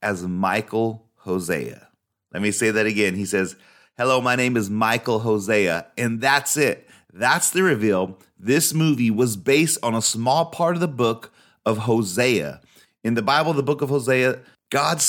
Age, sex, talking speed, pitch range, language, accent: 30-49, male, 170 wpm, 105-135 Hz, English, American